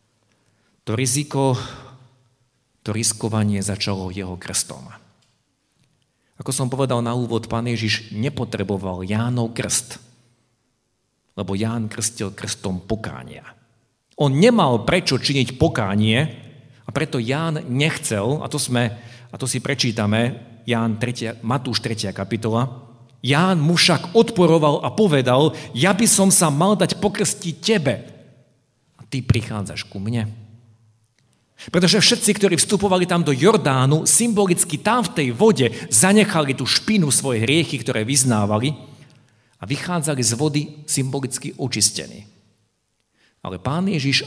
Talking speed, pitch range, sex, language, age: 120 wpm, 110-150 Hz, male, Slovak, 50-69